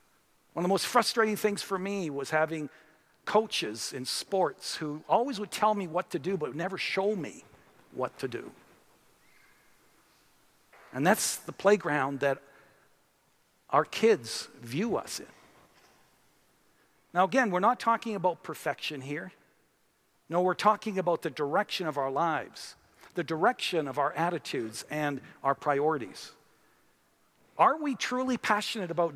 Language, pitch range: English, 155-205 Hz